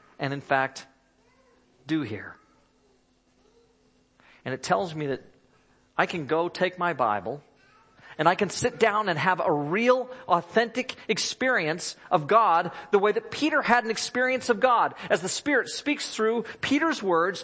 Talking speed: 155 wpm